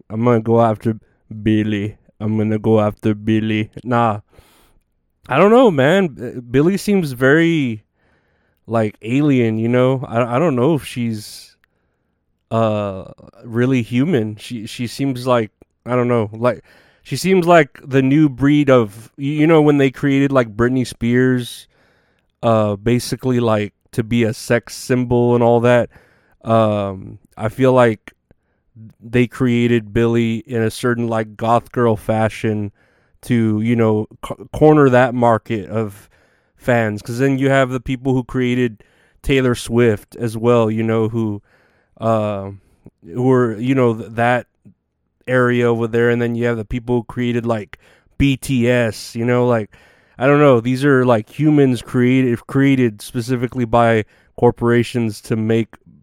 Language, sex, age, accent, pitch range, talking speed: English, male, 20-39, American, 110-130 Hz, 150 wpm